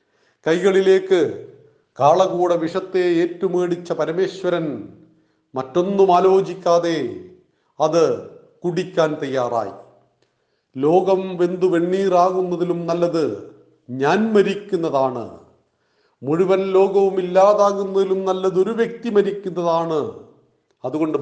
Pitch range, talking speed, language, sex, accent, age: 160-195 Hz, 60 wpm, Malayalam, male, native, 40-59